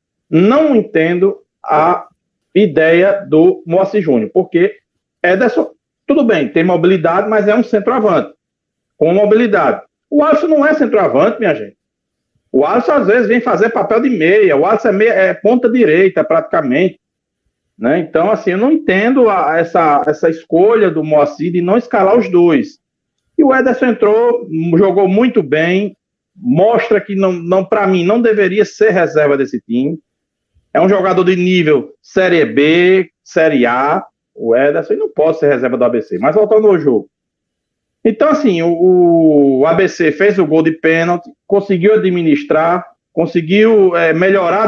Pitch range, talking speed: 165-220 Hz, 150 wpm